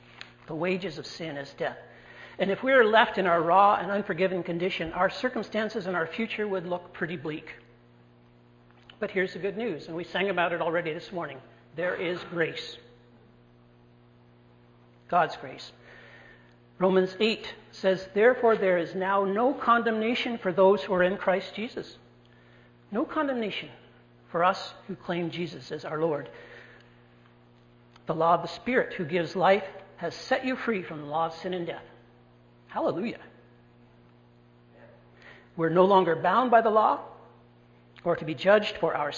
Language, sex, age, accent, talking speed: English, male, 60-79, American, 160 wpm